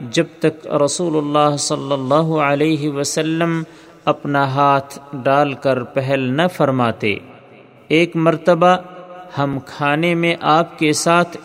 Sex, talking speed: male, 120 wpm